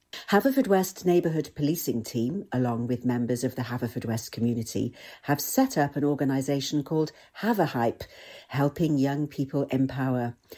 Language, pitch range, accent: English, 130-170 Hz, British